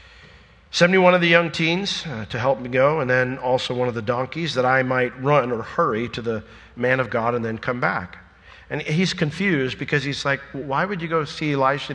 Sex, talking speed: male, 220 wpm